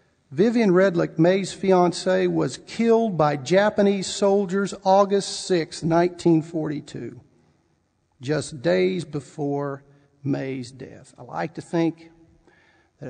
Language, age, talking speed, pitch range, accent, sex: English, 50-69, 100 wpm, 140-185 Hz, American, male